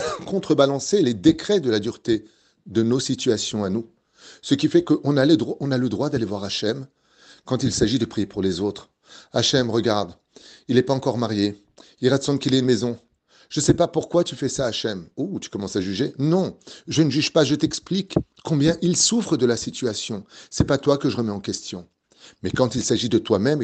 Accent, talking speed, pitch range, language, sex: French, 225 wpm, 110-150 Hz, French, male